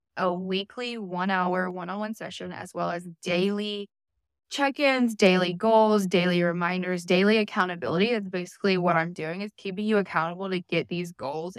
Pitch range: 175-210 Hz